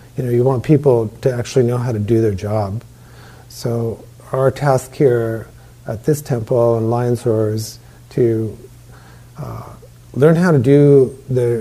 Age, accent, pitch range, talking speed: 40-59, American, 115-130 Hz, 160 wpm